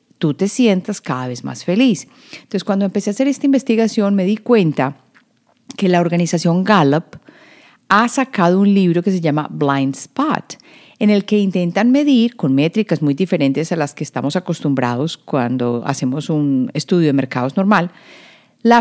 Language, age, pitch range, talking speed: Spanish, 40-59, 160-230 Hz, 165 wpm